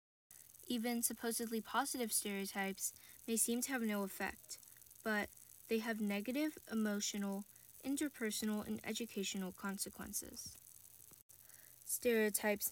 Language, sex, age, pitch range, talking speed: English, female, 10-29, 200-240 Hz, 95 wpm